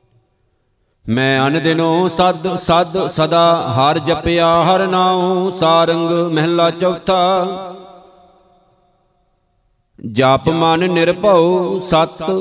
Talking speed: 75 wpm